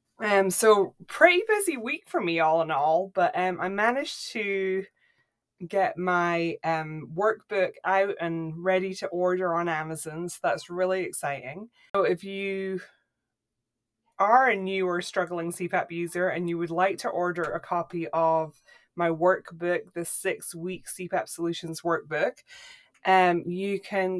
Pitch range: 170-195 Hz